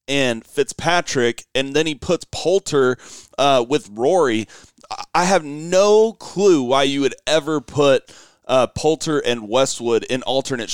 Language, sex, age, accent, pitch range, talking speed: English, male, 30-49, American, 120-150 Hz, 140 wpm